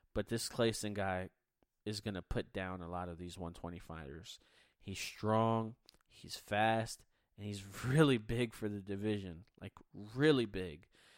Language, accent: English, American